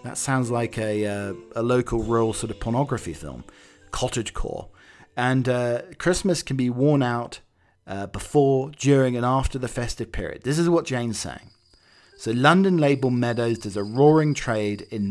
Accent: British